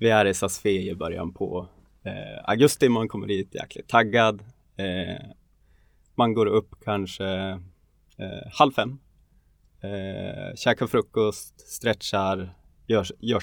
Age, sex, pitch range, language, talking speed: 20-39, male, 95-115 Hz, Swedish, 120 wpm